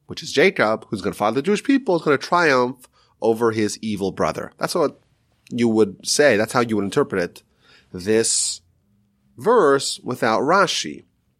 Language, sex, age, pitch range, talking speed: English, male, 30-49, 105-175 Hz, 175 wpm